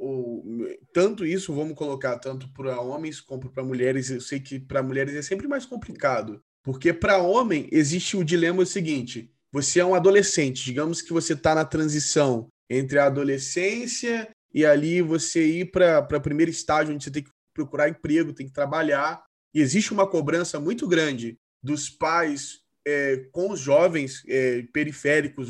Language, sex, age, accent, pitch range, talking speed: Portuguese, male, 20-39, Brazilian, 135-190 Hz, 160 wpm